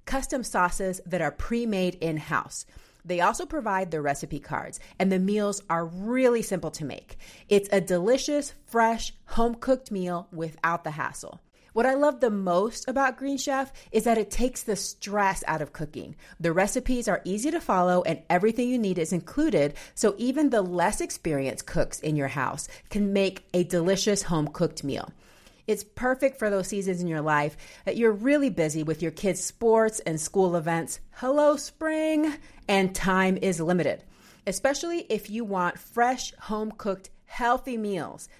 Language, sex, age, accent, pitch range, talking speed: English, female, 30-49, American, 170-230 Hz, 165 wpm